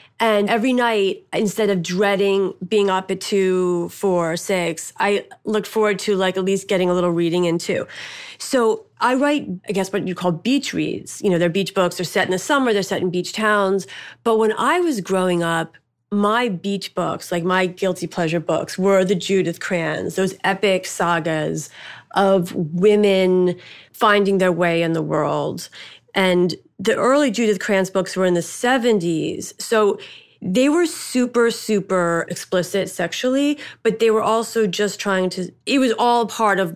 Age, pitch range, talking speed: 30-49, 180-215 Hz, 175 wpm